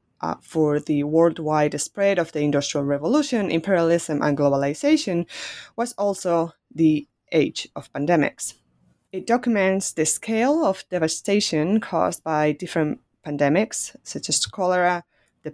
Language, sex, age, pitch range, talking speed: English, female, 20-39, 155-210 Hz, 125 wpm